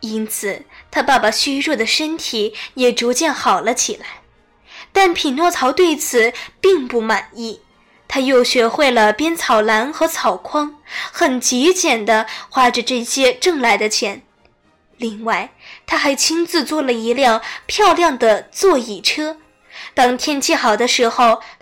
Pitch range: 225-325 Hz